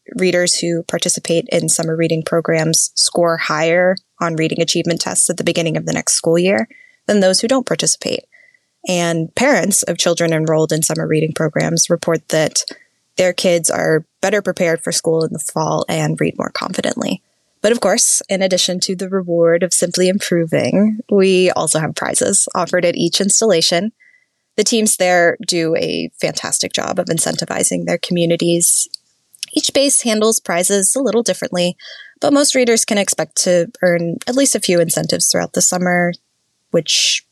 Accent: American